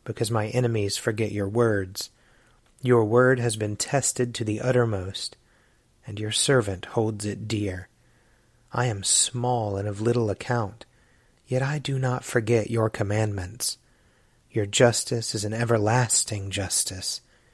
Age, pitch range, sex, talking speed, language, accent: 30-49, 105-120 Hz, male, 135 wpm, English, American